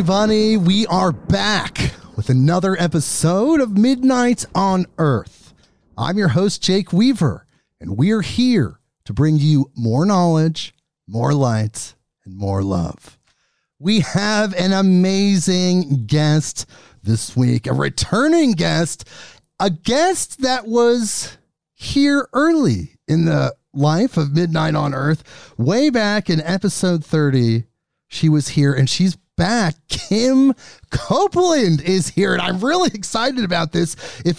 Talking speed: 130 wpm